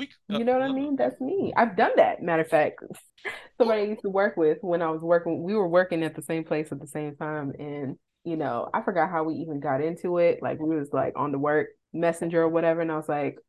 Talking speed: 265 wpm